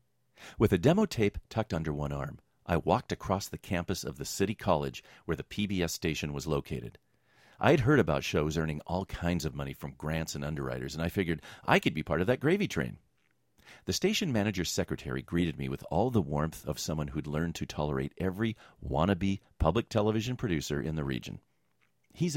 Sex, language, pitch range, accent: male, English, 75-105 Hz, American